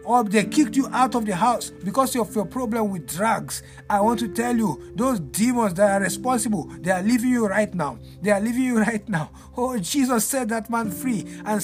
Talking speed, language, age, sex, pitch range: 220 wpm, English, 50-69, male, 215-255 Hz